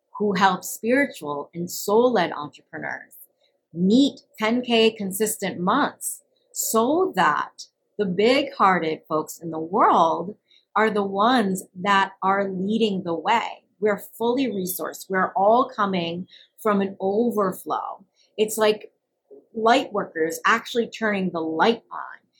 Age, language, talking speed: 30-49, English, 125 wpm